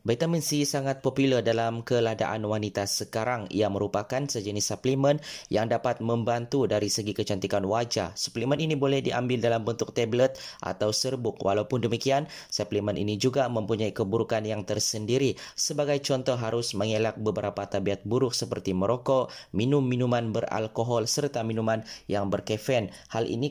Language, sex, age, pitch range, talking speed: Malay, male, 20-39, 105-130 Hz, 140 wpm